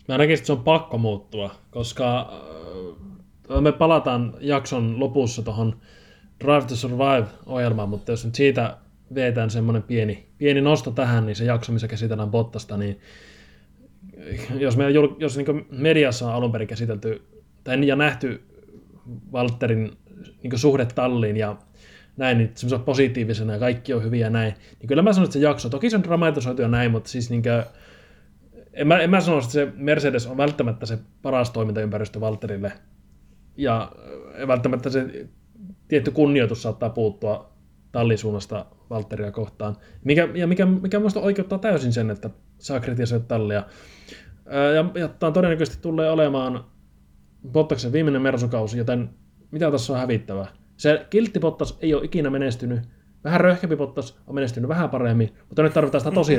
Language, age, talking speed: Finnish, 20-39, 155 wpm